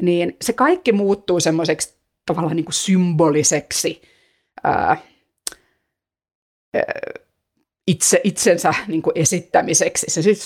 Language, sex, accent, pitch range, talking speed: Finnish, female, native, 165-215 Hz, 85 wpm